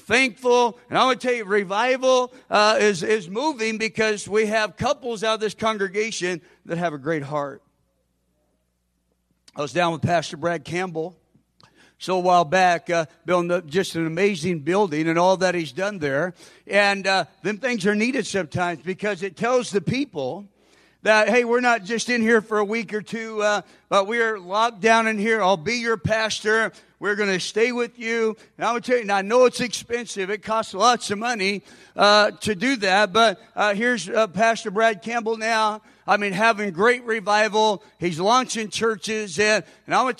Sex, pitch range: male, 195-230 Hz